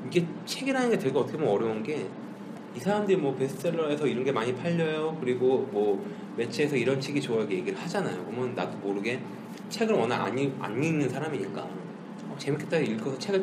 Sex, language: male, Korean